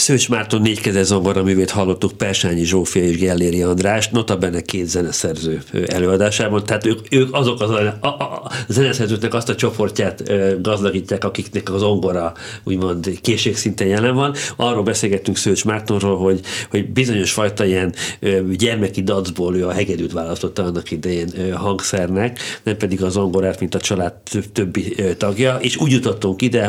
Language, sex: Hungarian, male